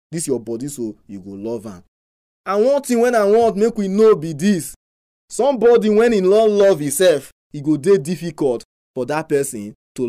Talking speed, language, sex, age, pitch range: 200 wpm, English, male, 20-39, 125-200 Hz